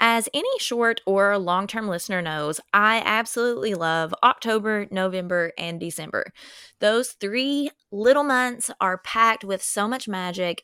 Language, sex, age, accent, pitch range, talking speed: English, female, 20-39, American, 180-220 Hz, 135 wpm